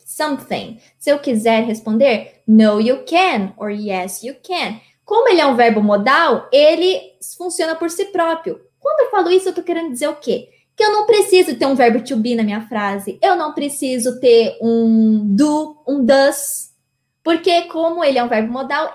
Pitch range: 225-300 Hz